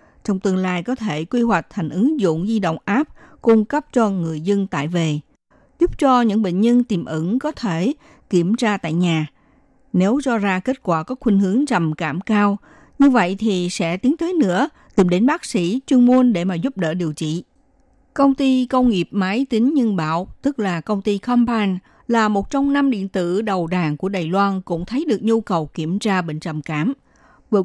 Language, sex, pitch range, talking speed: Vietnamese, female, 175-245 Hz, 215 wpm